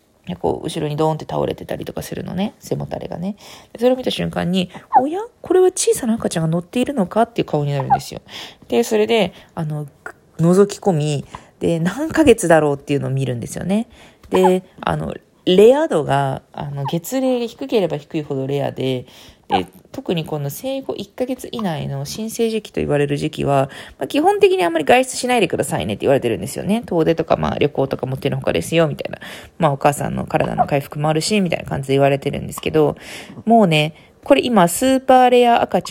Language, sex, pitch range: Japanese, female, 150-240 Hz